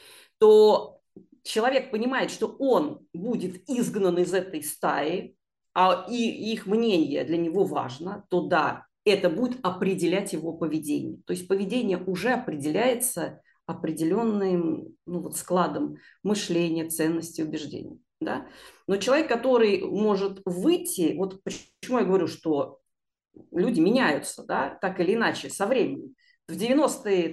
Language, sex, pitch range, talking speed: Russian, female, 165-220 Hz, 125 wpm